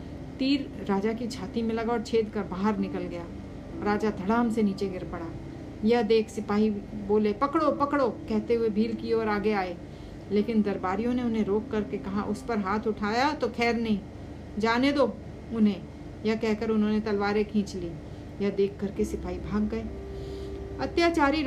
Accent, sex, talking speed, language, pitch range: native, female, 175 wpm, Hindi, 205-235 Hz